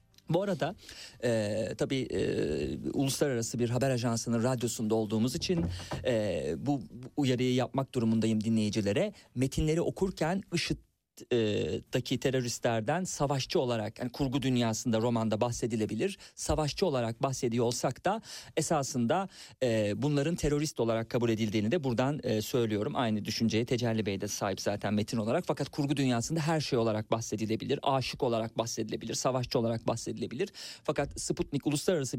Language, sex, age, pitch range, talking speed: Turkish, male, 40-59, 115-165 Hz, 135 wpm